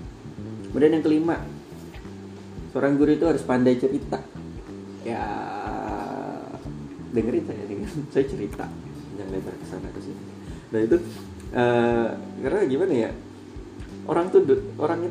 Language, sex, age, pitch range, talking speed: Indonesian, male, 20-39, 100-120 Hz, 105 wpm